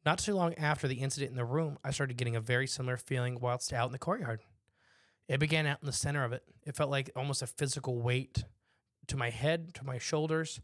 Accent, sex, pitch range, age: American, male, 120-140 Hz, 20-39